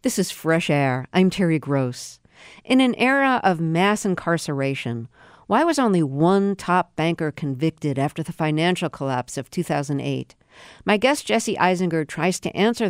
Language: English